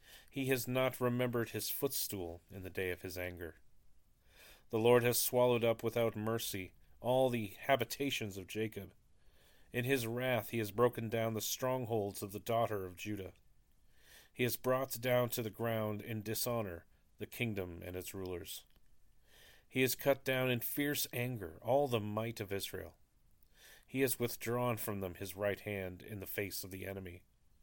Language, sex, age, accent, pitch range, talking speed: English, male, 40-59, American, 95-120 Hz, 170 wpm